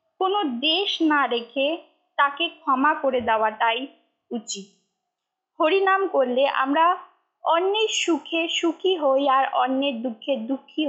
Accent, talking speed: native, 110 wpm